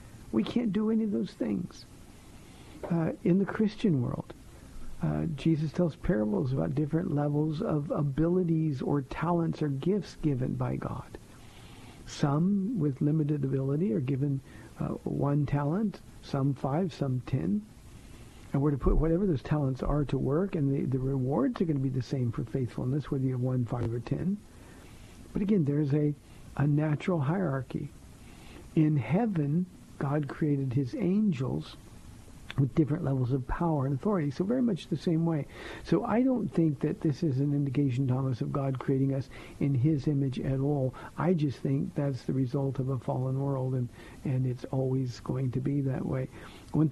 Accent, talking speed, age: American, 175 wpm, 60-79